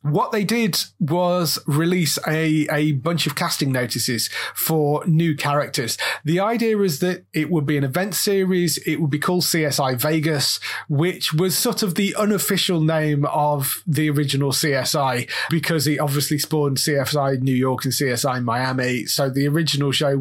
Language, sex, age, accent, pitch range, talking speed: English, male, 30-49, British, 140-170 Hz, 165 wpm